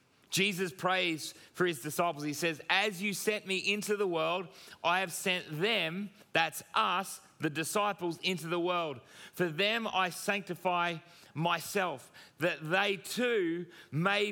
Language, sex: English, male